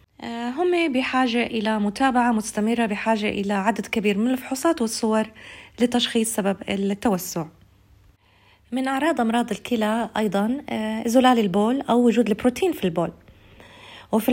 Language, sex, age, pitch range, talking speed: Arabic, female, 30-49, 200-250 Hz, 115 wpm